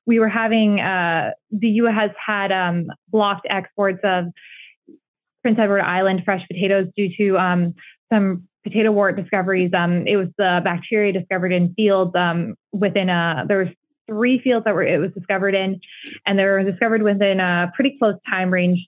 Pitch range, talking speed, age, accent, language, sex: 185-215 Hz, 180 wpm, 20-39, American, English, female